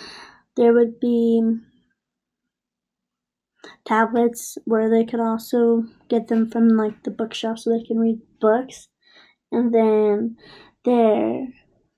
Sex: female